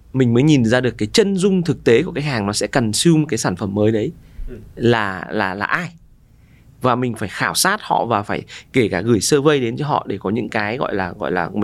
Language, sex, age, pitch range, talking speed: Vietnamese, male, 20-39, 110-155 Hz, 255 wpm